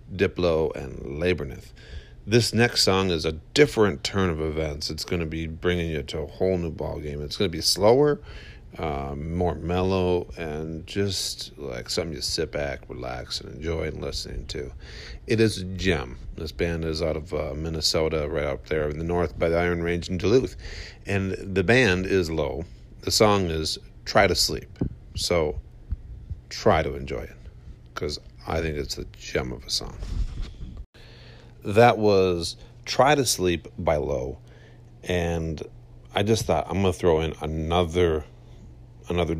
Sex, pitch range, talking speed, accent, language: male, 80-105 Hz, 165 wpm, American, English